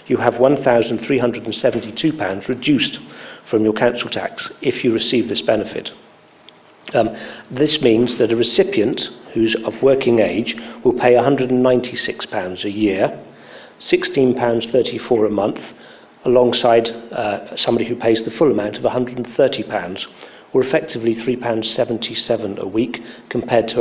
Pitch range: 110-125 Hz